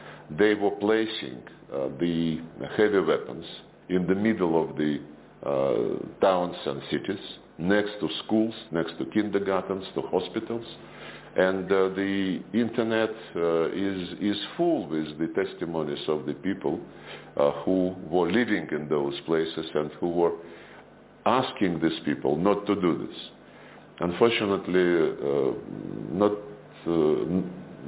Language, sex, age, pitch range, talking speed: English, male, 50-69, 80-100 Hz, 125 wpm